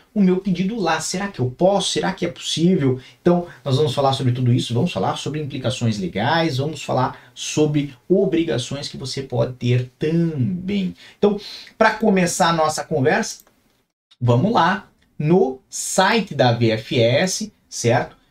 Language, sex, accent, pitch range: Portuguese, male, Brazilian, 125-185 Hz